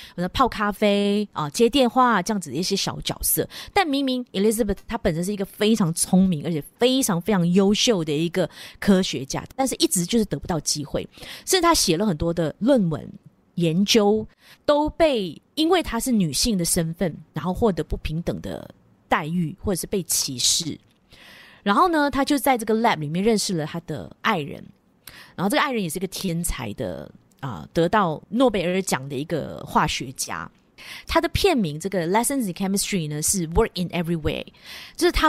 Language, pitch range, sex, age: Chinese, 170-230 Hz, female, 20-39